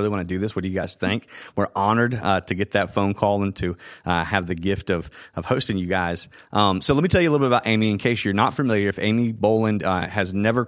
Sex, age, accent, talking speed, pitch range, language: male, 30-49, American, 280 wpm, 95-115 Hz, English